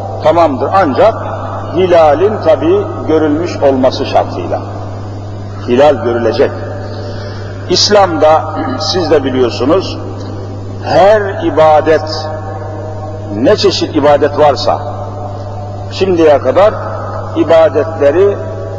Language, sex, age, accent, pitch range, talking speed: Turkish, male, 50-69, native, 100-150 Hz, 70 wpm